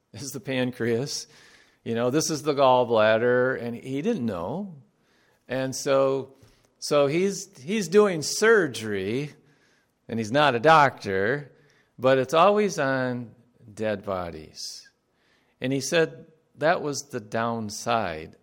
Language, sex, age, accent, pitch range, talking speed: English, male, 50-69, American, 105-145 Hz, 125 wpm